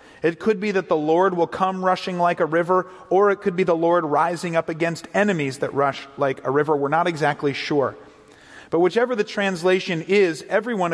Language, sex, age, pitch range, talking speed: English, male, 40-59, 145-185 Hz, 205 wpm